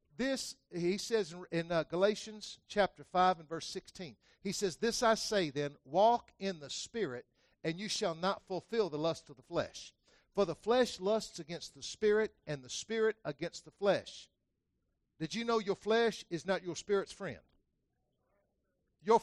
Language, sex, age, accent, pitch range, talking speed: English, male, 50-69, American, 170-230 Hz, 170 wpm